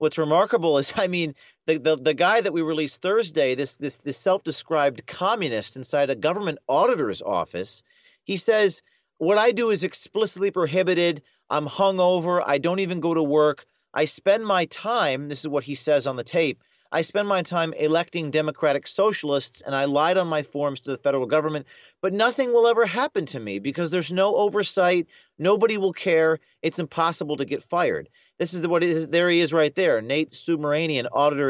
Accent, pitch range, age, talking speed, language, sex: American, 150-195 Hz, 40-59, 190 wpm, English, male